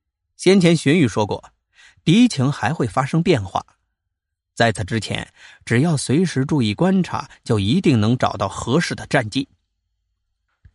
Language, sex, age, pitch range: Chinese, male, 30-49, 95-135 Hz